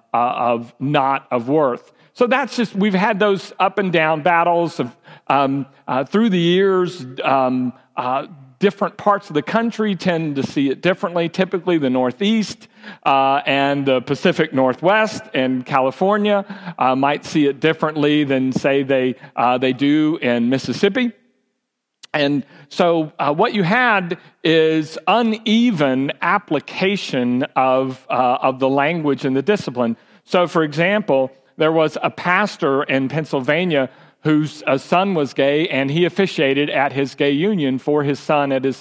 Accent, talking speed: American, 155 wpm